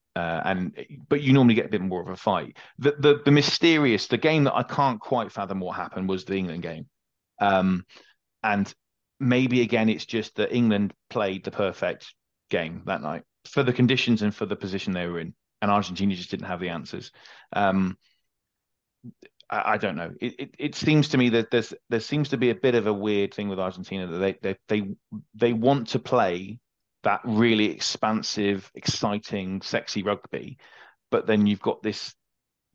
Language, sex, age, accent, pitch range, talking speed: English, male, 30-49, British, 95-120 Hz, 190 wpm